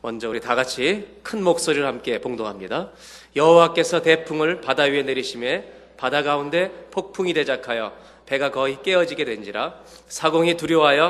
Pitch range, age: 100-165 Hz, 30-49